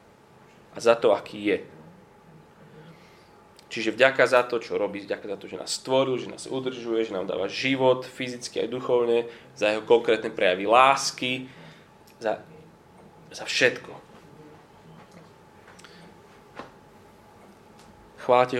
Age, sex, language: 20-39, male, Slovak